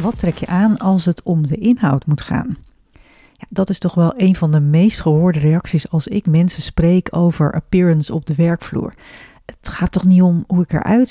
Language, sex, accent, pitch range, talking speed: Dutch, female, Dutch, 160-205 Hz, 210 wpm